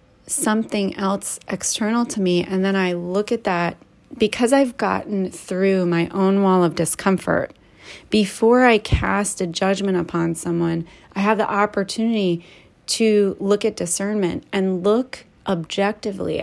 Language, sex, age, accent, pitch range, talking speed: English, female, 30-49, American, 175-215 Hz, 140 wpm